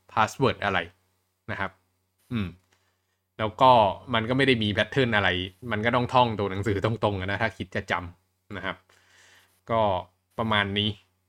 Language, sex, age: Thai, male, 20-39